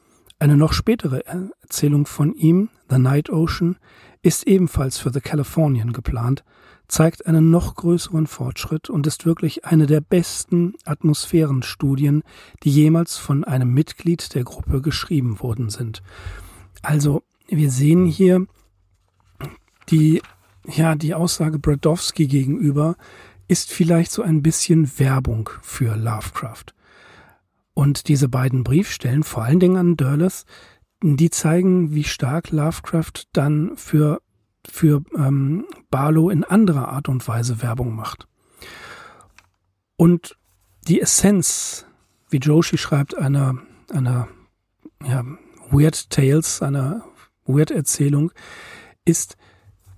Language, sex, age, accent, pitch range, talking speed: German, male, 40-59, German, 130-165 Hz, 115 wpm